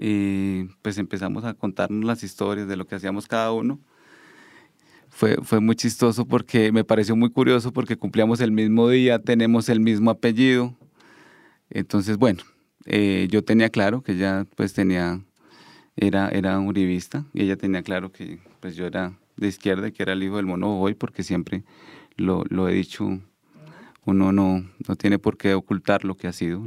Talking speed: 175 wpm